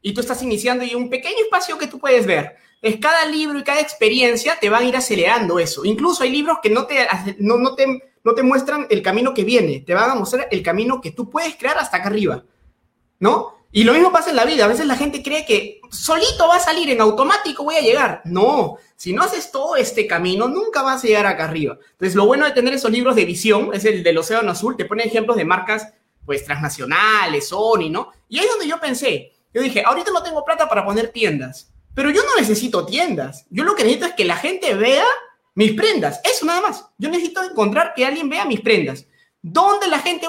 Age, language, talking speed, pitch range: 30-49, Spanish, 235 wpm, 200-310 Hz